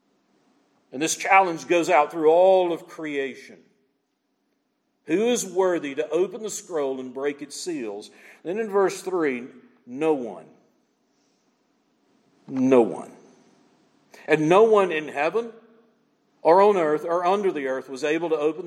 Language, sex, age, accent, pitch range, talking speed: English, male, 50-69, American, 140-230 Hz, 140 wpm